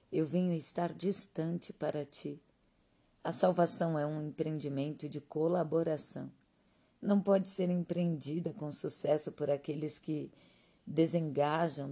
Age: 50-69